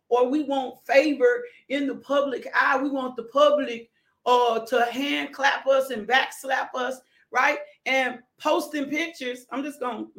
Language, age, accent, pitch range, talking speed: English, 40-59, American, 250-290 Hz, 165 wpm